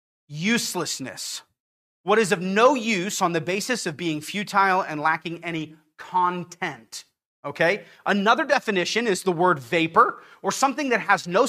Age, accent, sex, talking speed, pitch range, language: 30-49, American, male, 145 wpm, 185-275 Hz, English